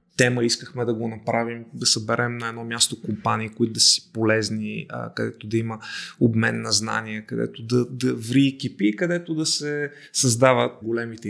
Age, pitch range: 20-39, 115-140 Hz